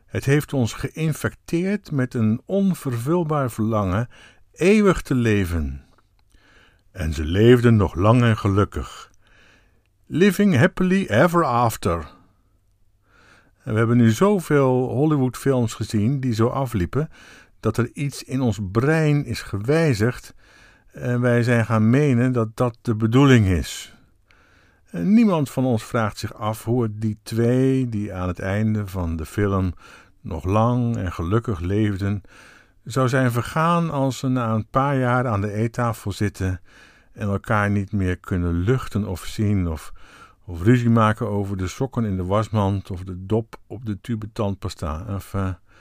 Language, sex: Dutch, male